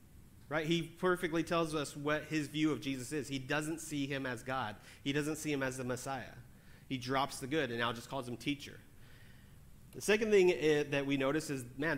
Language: English